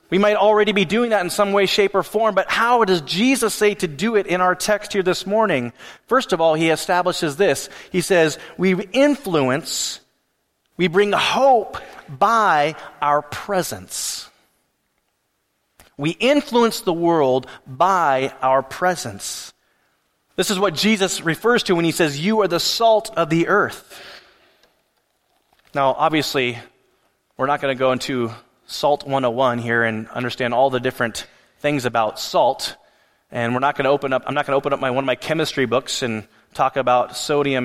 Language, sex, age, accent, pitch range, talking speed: English, male, 30-49, American, 130-185 Hz, 170 wpm